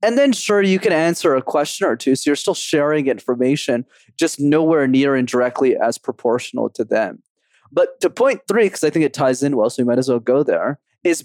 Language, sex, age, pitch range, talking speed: English, male, 20-39, 135-200 Hz, 230 wpm